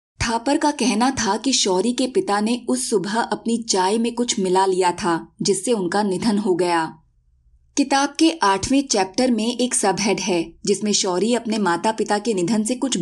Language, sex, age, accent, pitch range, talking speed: Hindi, female, 20-39, native, 190-245 Hz, 185 wpm